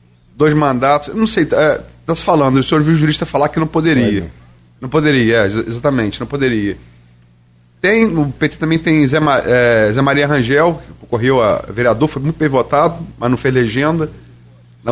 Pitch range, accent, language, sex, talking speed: 120-155 Hz, Brazilian, Portuguese, male, 195 wpm